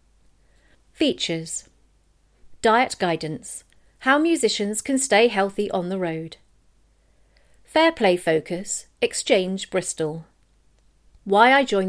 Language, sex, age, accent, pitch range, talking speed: English, female, 40-59, British, 175-260 Hz, 95 wpm